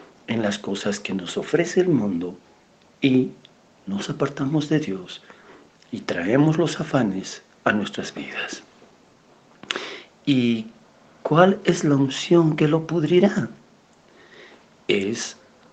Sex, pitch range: male, 120-175 Hz